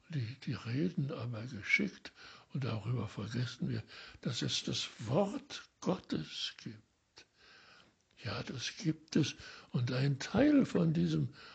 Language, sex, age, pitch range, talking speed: German, male, 60-79, 130-180 Hz, 125 wpm